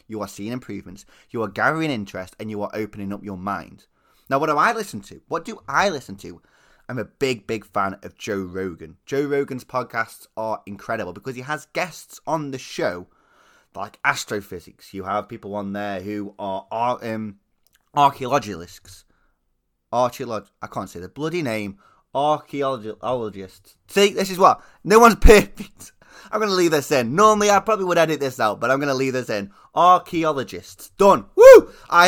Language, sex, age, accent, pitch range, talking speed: English, male, 20-39, British, 105-165 Hz, 180 wpm